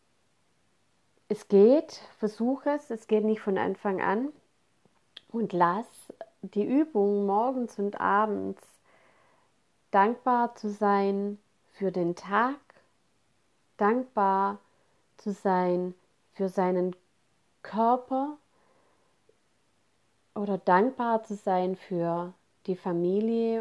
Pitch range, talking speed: 195-225 Hz, 90 wpm